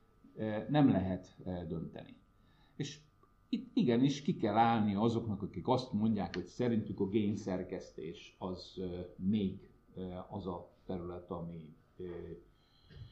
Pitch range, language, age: 90-135 Hz, Hungarian, 50-69